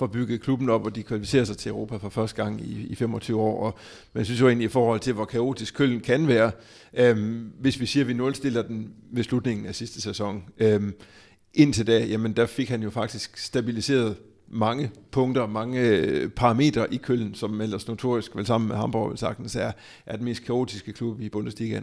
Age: 60-79